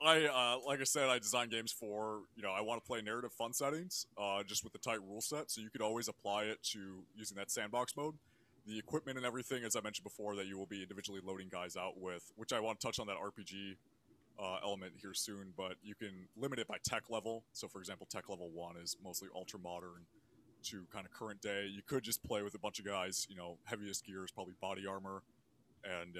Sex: male